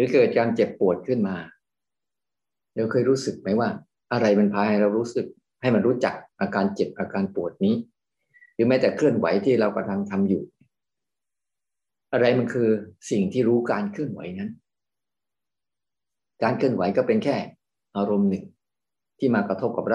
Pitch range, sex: 100-120 Hz, male